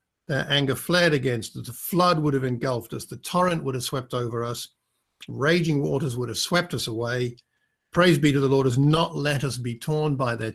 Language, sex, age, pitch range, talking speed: English, male, 50-69, 125-160 Hz, 215 wpm